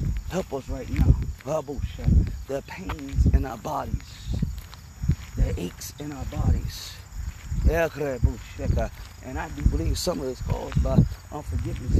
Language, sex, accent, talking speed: English, male, American, 120 wpm